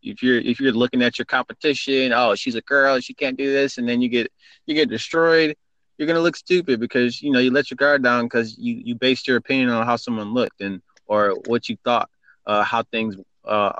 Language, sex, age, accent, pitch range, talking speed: English, male, 20-39, American, 115-130 Hz, 235 wpm